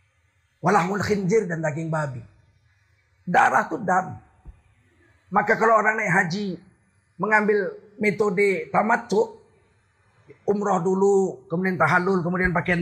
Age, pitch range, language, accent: 40-59, 130-205 Hz, Indonesian, native